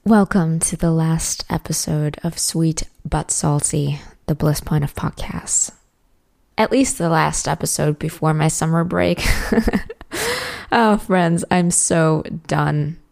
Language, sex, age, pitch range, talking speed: English, female, 20-39, 160-210 Hz, 130 wpm